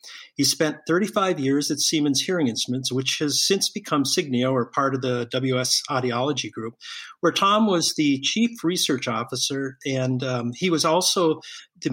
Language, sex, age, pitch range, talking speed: English, male, 50-69, 130-165 Hz, 165 wpm